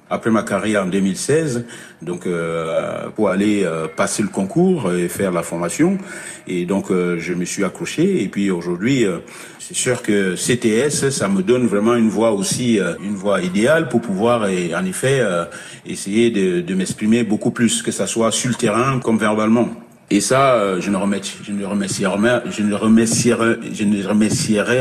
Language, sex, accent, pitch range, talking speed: French, male, French, 95-125 Hz, 170 wpm